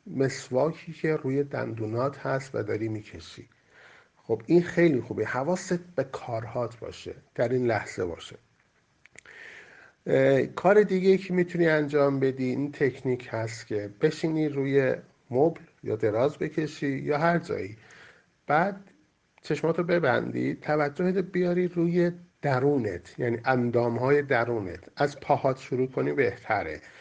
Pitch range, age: 120-160 Hz, 50-69